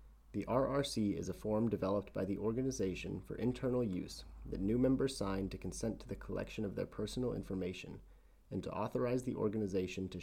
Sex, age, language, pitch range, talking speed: male, 30-49, English, 90-115 Hz, 180 wpm